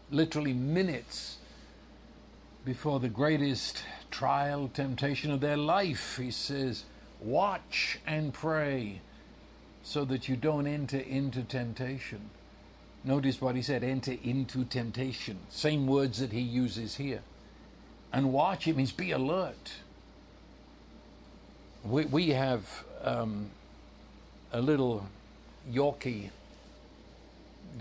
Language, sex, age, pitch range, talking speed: English, male, 60-79, 115-150 Hz, 105 wpm